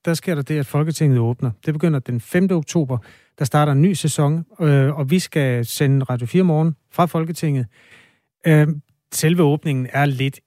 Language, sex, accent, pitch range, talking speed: Danish, male, native, 125-160 Hz, 185 wpm